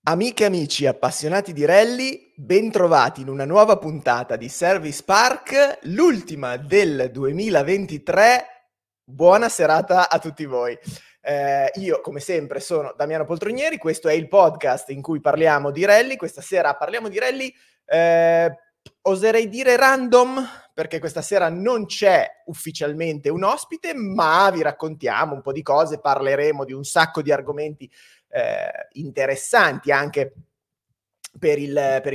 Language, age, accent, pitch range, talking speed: Italian, 20-39, native, 140-200 Hz, 140 wpm